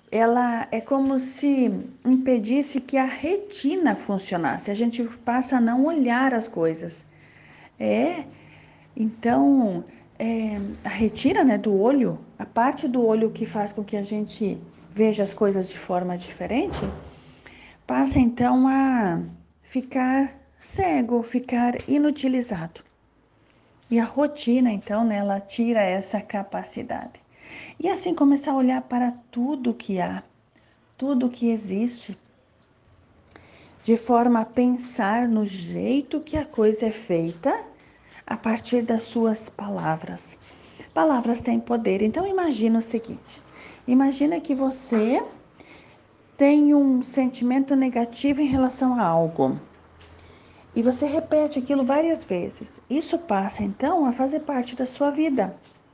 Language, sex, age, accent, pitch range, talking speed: Portuguese, female, 40-59, Brazilian, 210-270 Hz, 130 wpm